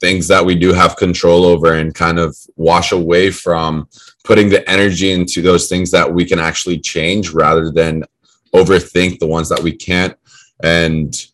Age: 20-39